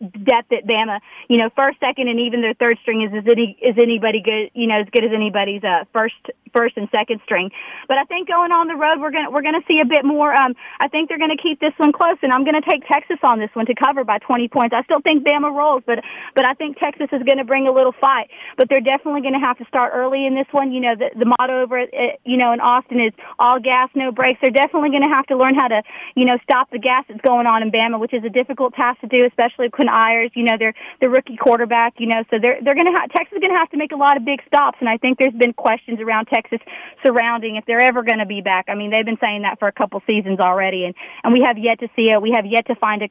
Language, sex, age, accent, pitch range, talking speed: English, female, 30-49, American, 225-275 Hz, 300 wpm